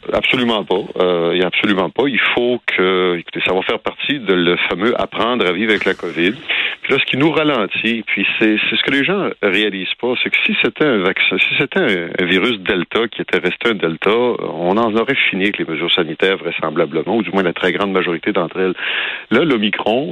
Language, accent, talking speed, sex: French, French, 225 wpm, male